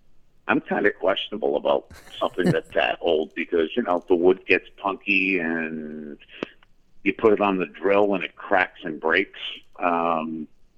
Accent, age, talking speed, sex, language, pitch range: American, 50-69, 160 wpm, male, English, 85-100 Hz